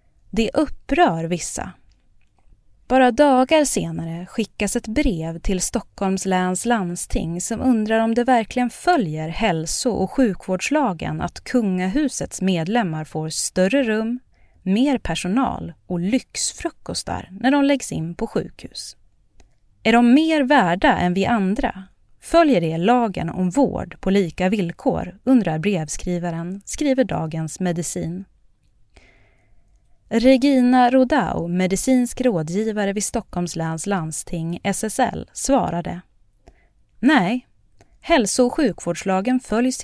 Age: 30-49